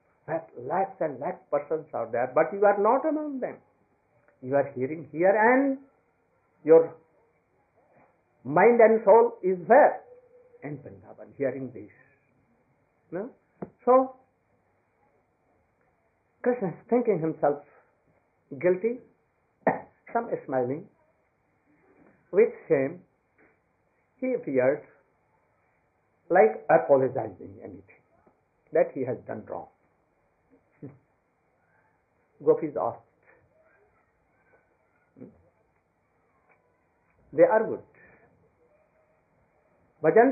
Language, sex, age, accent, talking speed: English, male, 60-79, Indian, 85 wpm